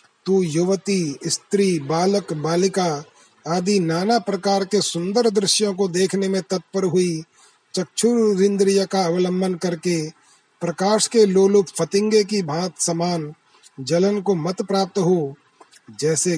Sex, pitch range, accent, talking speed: male, 170-205 Hz, native, 120 wpm